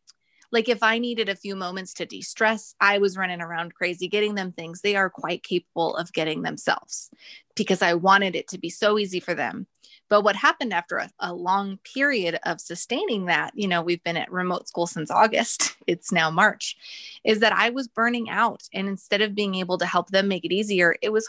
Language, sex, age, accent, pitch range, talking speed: English, female, 20-39, American, 175-215 Hz, 215 wpm